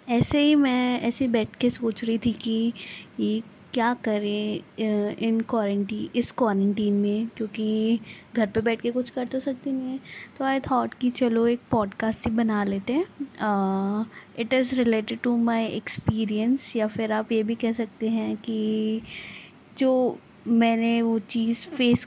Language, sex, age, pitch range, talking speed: Hindi, female, 20-39, 215-245 Hz, 165 wpm